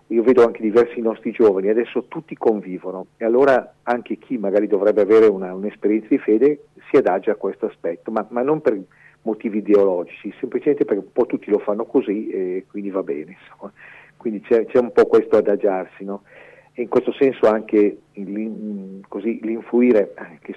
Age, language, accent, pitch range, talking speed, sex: 50-69, Italian, native, 100-110 Hz, 180 wpm, male